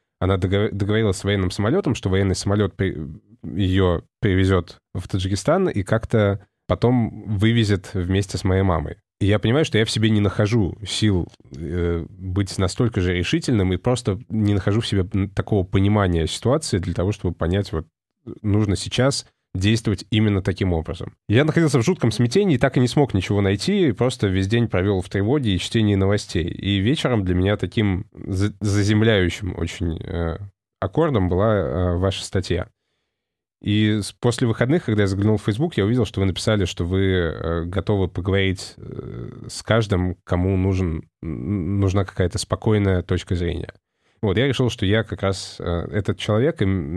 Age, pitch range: 20-39, 95-110 Hz